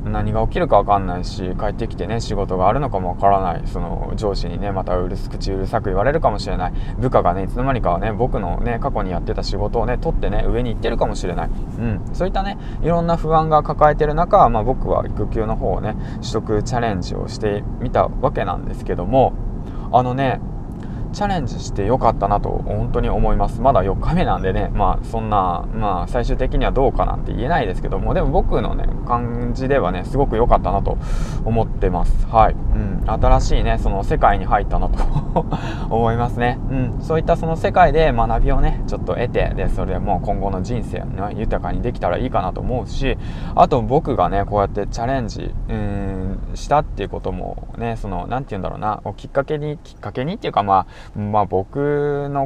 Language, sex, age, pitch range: Japanese, male, 20-39, 100-125 Hz